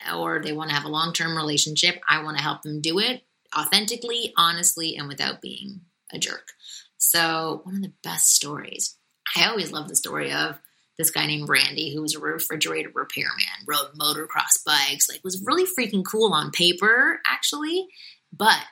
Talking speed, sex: 175 wpm, female